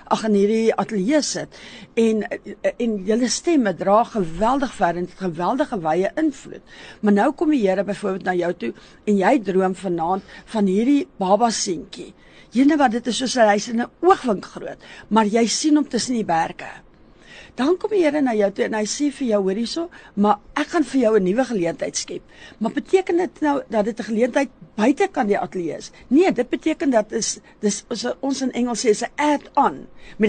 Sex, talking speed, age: female, 200 wpm, 60-79